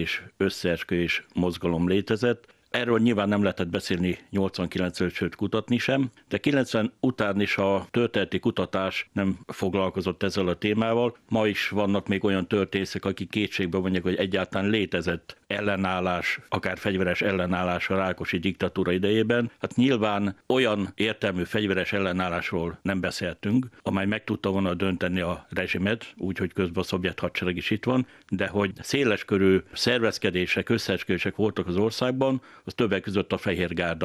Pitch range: 90-105 Hz